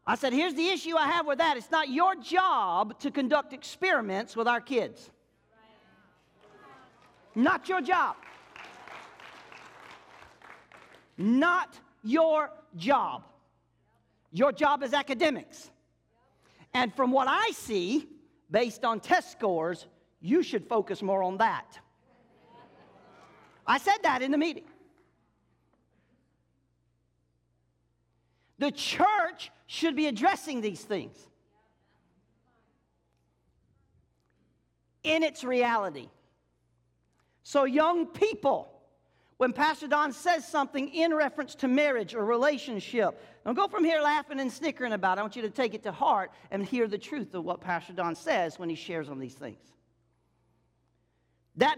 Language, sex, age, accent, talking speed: English, male, 50-69, American, 125 wpm